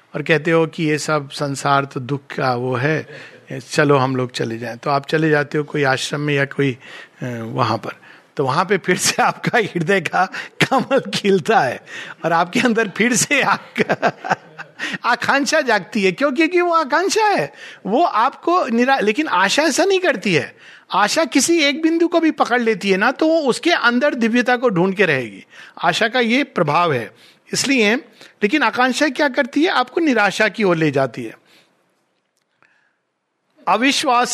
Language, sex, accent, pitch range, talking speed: Hindi, male, native, 155-255 Hz, 175 wpm